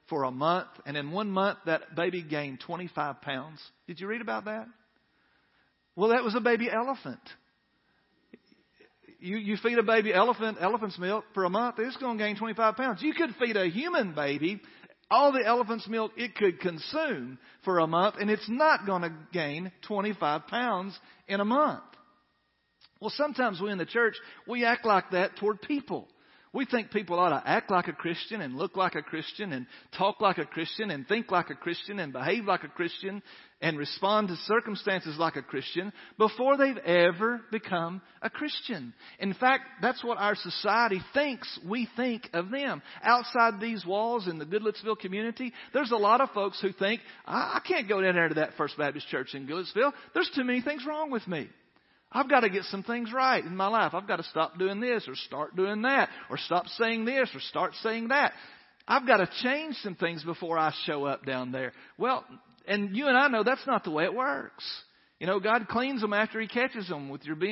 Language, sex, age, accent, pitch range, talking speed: English, male, 50-69, American, 175-235 Hz, 205 wpm